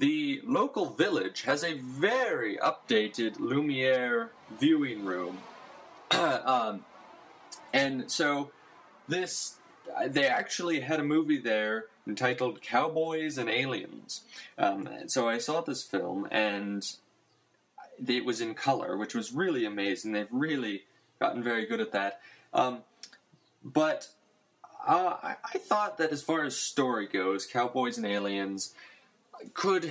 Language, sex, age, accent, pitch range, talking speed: English, male, 20-39, American, 105-160 Hz, 120 wpm